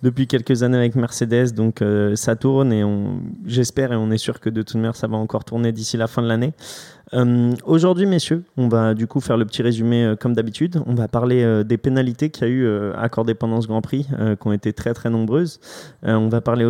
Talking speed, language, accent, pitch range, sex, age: 250 wpm, French, French, 110-125 Hz, male, 20-39